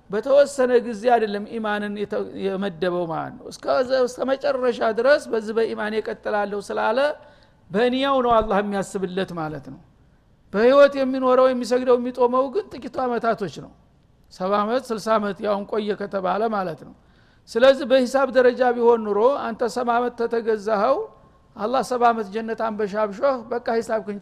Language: Amharic